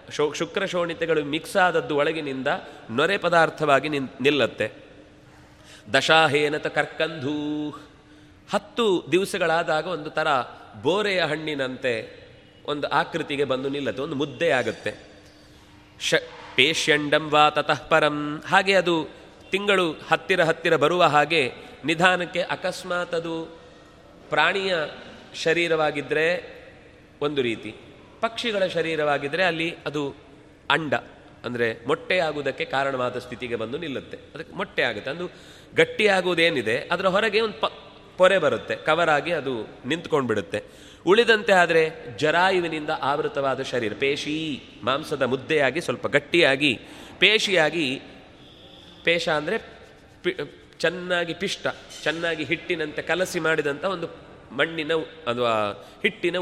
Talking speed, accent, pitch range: 95 wpm, native, 145-180 Hz